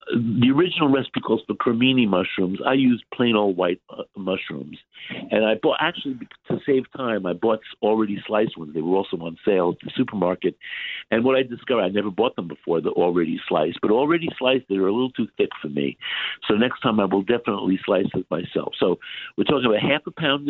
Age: 60-79